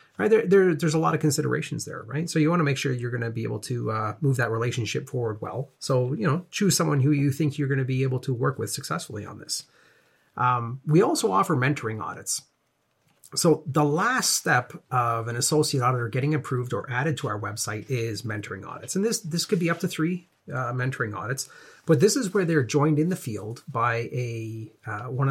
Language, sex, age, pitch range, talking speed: English, male, 40-59, 115-150 Hz, 220 wpm